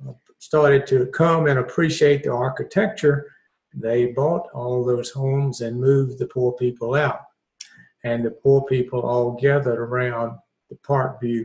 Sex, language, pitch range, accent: male, English, 125-140 Hz, American